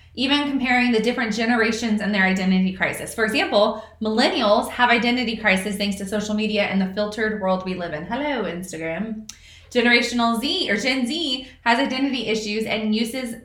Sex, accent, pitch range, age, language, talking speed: female, American, 195-245 Hz, 20-39, English, 170 wpm